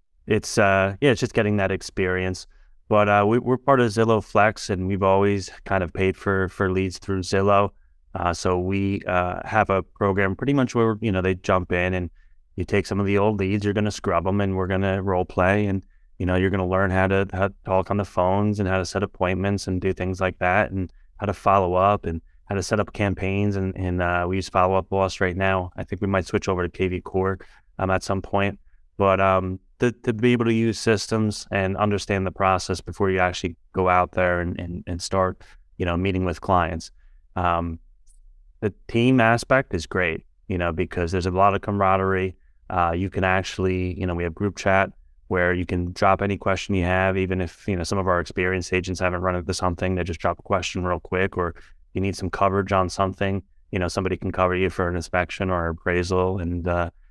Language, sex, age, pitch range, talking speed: English, male, 20-39, 90-100 Hz, 230 wpm